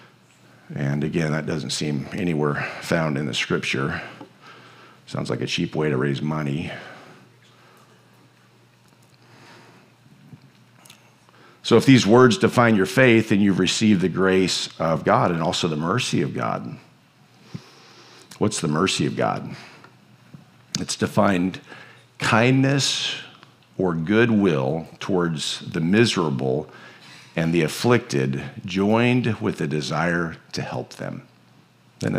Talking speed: 115 wpm